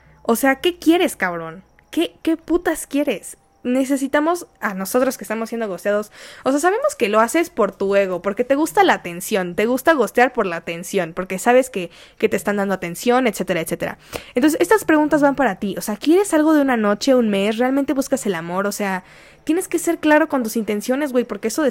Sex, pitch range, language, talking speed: female, 205-265 Hz, Spanish, 215 wpm